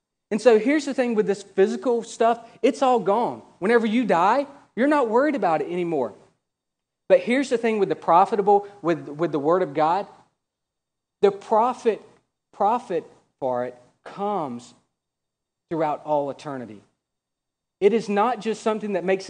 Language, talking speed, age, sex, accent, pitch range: English, 155 wpm, 40-59, male, American, 175-220 Hz